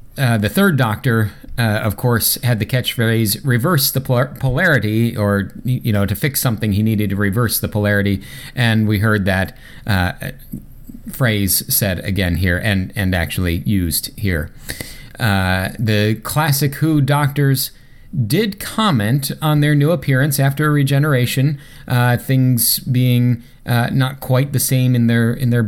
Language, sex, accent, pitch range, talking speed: English, male, American, 100-130 Hz, 150 wpm